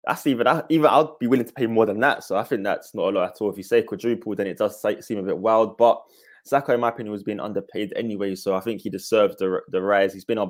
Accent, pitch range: British, 95-115 Hz